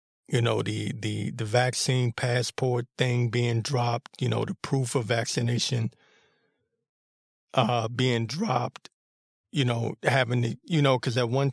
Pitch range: 120-145 Hz